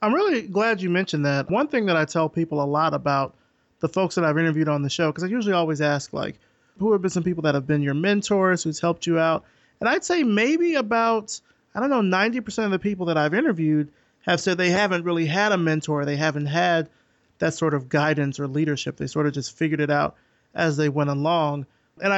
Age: 30-49